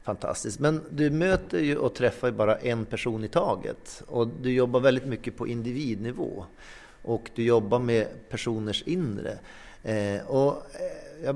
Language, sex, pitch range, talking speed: English, male, 110-140 Hz, 150 wpm